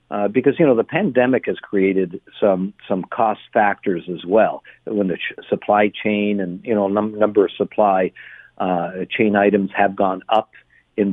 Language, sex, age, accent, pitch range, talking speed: English, male, 50-69, American, 105-135 Hz, 180 wpm